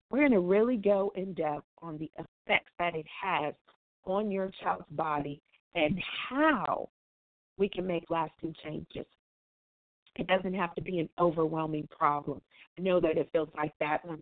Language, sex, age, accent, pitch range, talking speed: English, female, 40-59, American, 155-195 Hz, 165 wpm